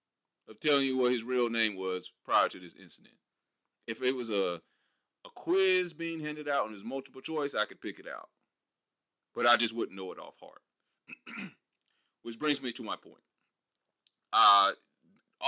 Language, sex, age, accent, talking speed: English, male, 30-49, American, 175 wpm